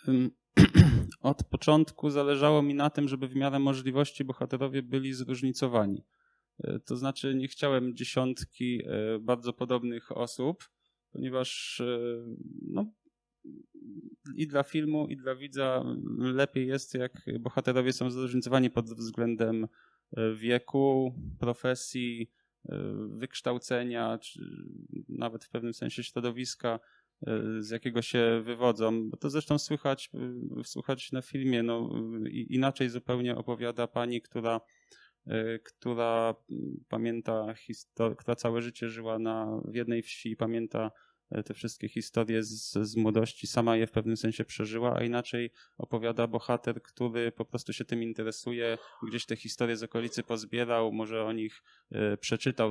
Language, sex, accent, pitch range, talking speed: Polish, male, native, 115-135 Hz, 120 wpm